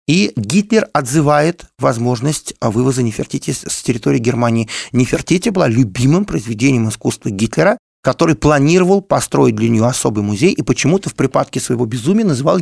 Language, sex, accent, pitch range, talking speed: Russian, male, native, 130-180 Hz, 140 wpm